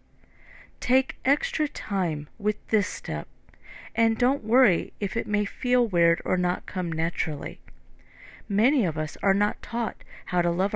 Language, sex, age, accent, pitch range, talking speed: English, female, 40-59, American, 165-230 Hz, 150 wpm